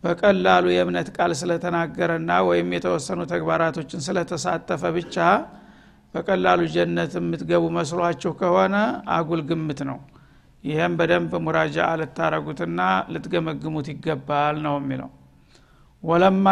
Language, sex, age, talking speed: Amharic, male, 60-79, 85 wpm